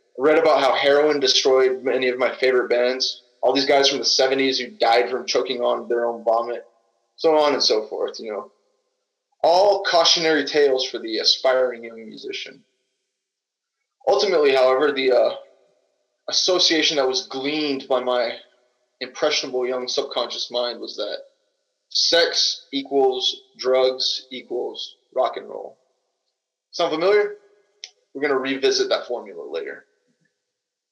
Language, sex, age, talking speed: English, male, 20-39, 135 wpm